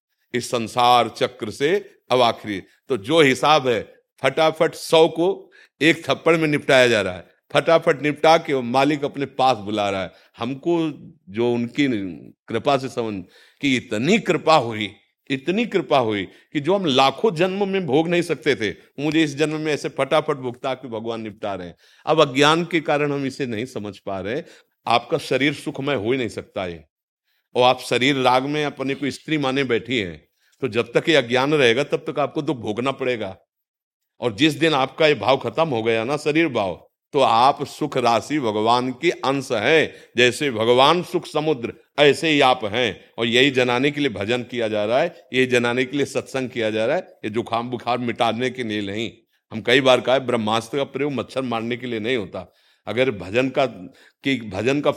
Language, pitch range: Hindi, 120-155 Hz